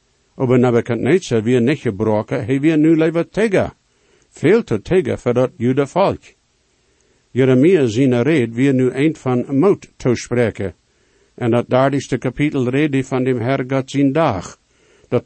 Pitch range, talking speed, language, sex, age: 120-150 Hz, 155 wpm, English, male, 60-79